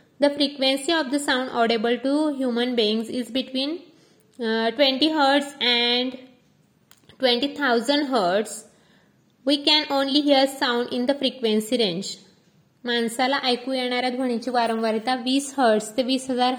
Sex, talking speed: female, 125 wpm